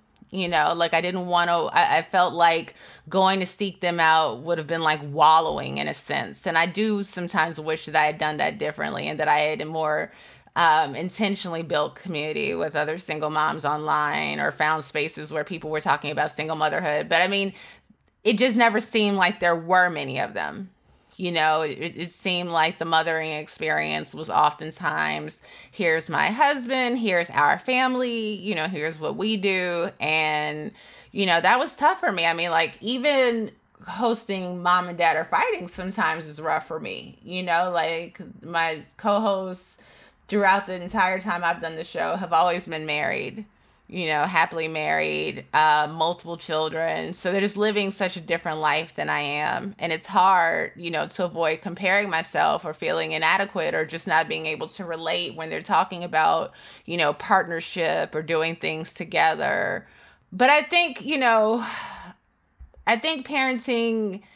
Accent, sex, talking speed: American, female, 180 wpm